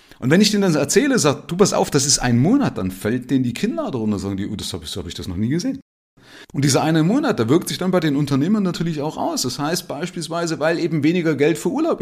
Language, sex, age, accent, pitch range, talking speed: German, male, 40-59, German, 110-180 Hz, 290 wpm